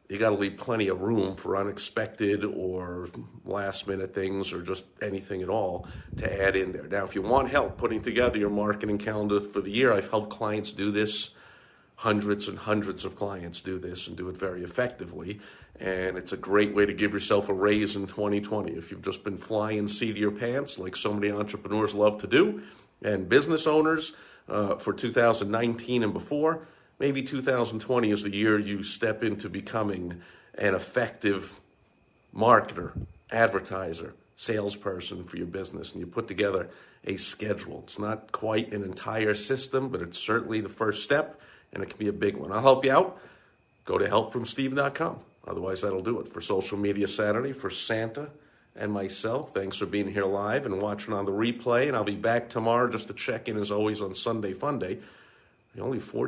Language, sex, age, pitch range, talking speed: English, male, 50-69, 100-120 Hz, 185 wpm